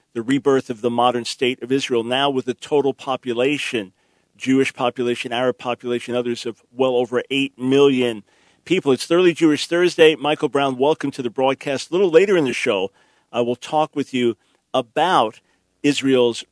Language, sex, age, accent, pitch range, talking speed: English, male, 40-59, American, 125-150 Hz, 170 wpm